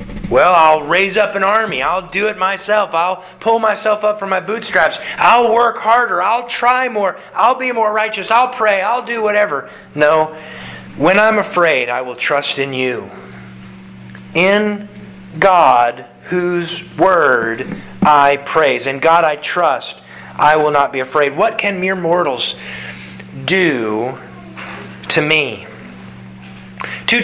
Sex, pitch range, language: male, 135-195 Hz, English